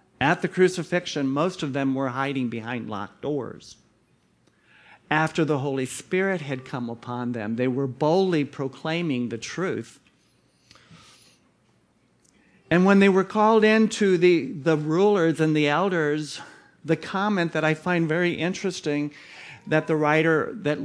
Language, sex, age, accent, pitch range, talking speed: English, male, 50-69, American, 140-190 Hz, 140 wpm